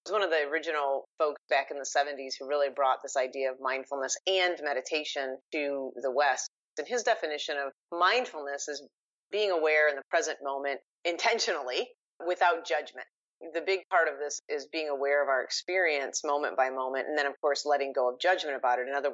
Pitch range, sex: 135-185 Hz, female